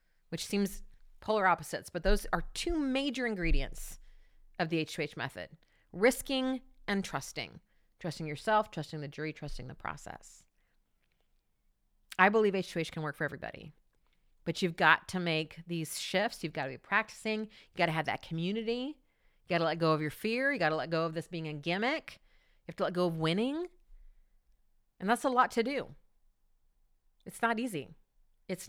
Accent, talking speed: American, 180 wpm